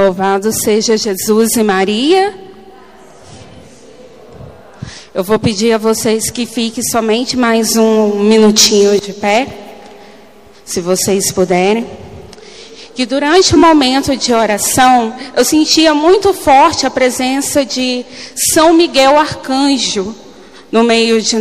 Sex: female